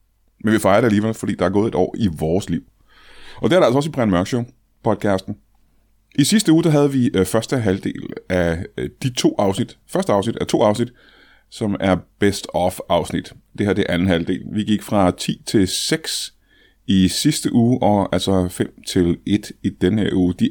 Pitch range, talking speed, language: 90-115 Hz, 200 wpm, Danish